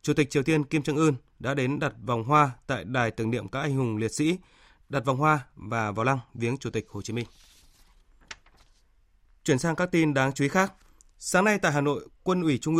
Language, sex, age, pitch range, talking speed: Vietnamese, male, 20-39, 125-160 Hz, 230 wpm